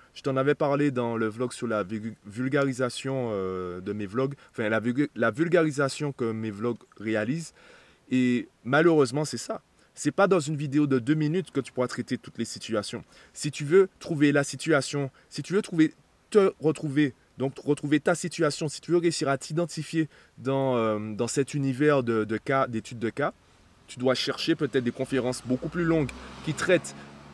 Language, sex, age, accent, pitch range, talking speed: French, male, 20-39, French, 115-155 Hz, 175 wpm